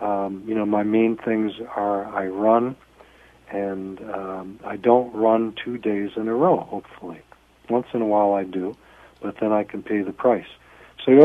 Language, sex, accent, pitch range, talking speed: English, male, American, 100-120 Hz, 185 wpm